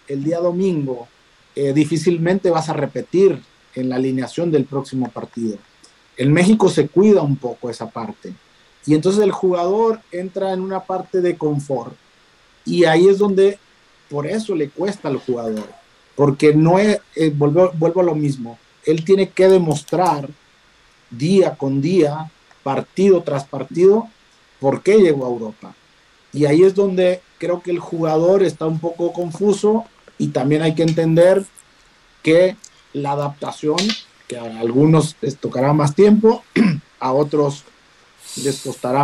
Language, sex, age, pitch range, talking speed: Spanish, male, 40-59, 140-185 Hz, 150 wpm